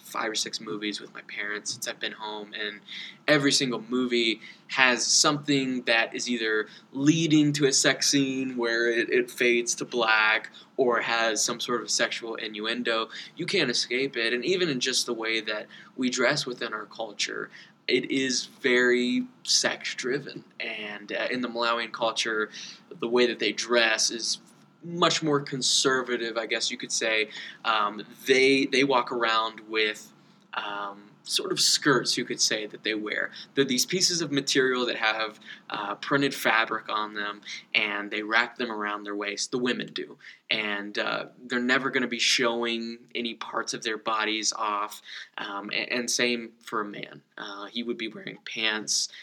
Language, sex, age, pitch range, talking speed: English, male, 20-39, 110-130 Hz, 175 wpm